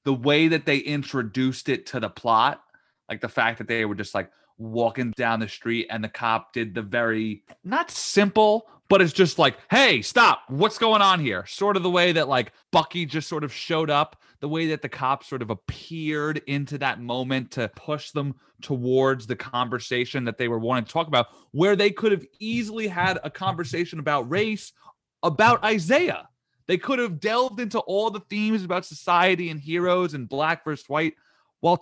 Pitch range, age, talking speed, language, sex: 130-185 Hz, 30-49, 195 wpm, English, male